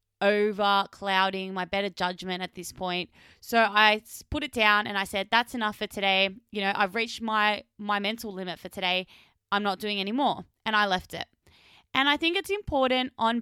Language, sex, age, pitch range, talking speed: English, female, 20-39, 195-240 Hz, 195 wpm